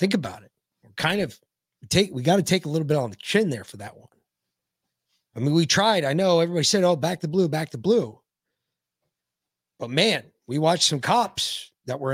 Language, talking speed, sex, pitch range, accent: English, 215 wpm, male, 125-195 Hz, American